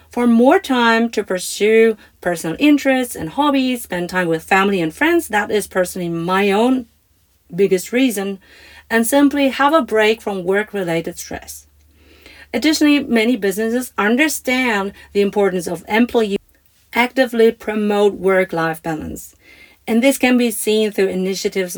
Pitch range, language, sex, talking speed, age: 185-235 Hz, English, female, 135 wpm, 40-59